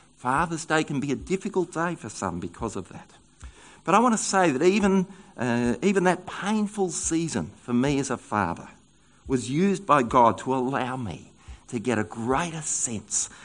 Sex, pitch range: male, 115-175 Hz